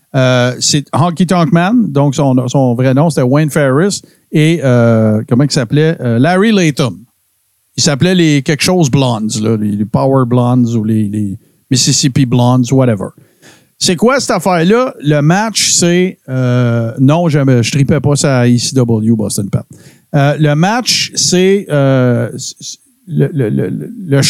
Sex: male